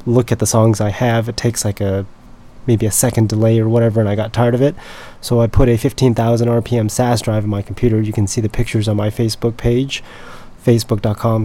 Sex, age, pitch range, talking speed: male, 30-49, 110-125 Hz, 225 wpm